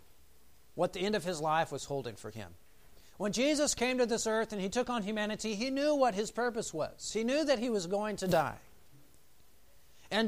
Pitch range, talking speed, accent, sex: 150-225 Hz, 210 wpm, American, male